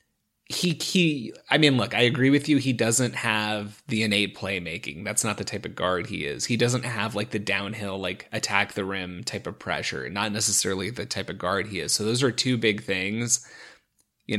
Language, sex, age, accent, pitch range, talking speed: English, male, 30-49, American, 100-120 Hz, 215 wpm